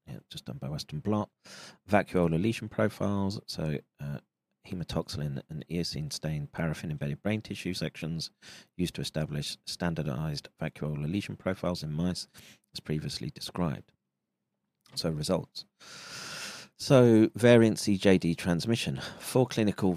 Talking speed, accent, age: 115 wpm, British, 40-59